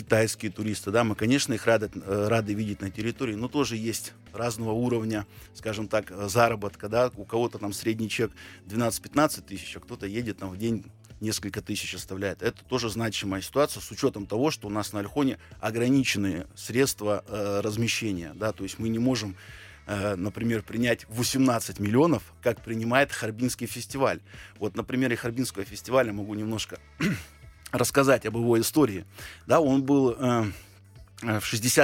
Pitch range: 105-120 Hz